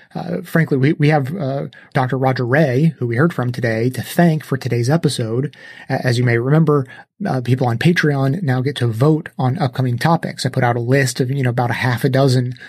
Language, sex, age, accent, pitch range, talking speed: English, male, 30-49, American, 125-155 Hz, 220 wpm